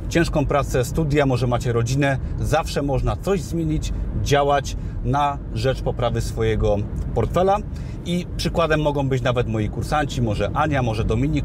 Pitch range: 115-150 Hz